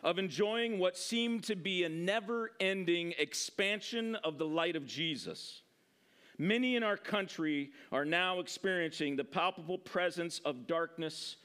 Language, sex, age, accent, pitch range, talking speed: English, male, 50-69, American, 175-240 Hz, 140 wpm